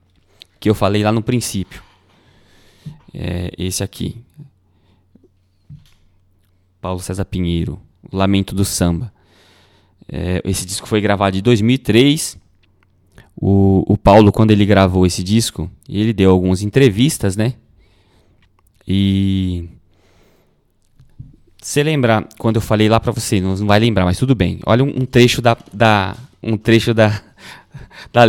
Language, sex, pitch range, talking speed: Portuguese, male, 95-120 Hz, 125 wpm